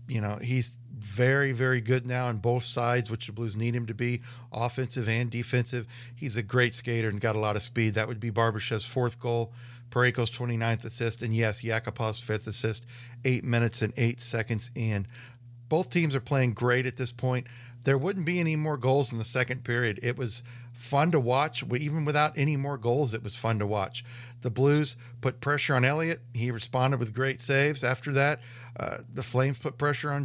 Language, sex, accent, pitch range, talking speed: English, male, American, 120-135 Hz, 200 wpm